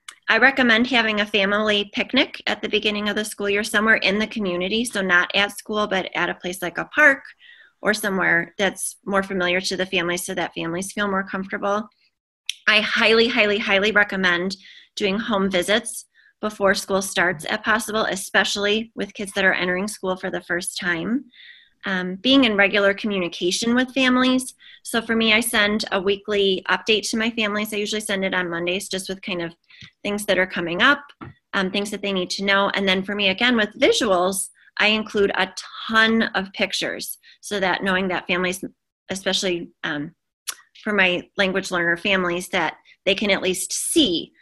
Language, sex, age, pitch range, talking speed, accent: English, female, 20-39, 185-215 Hz, 185 wpm, American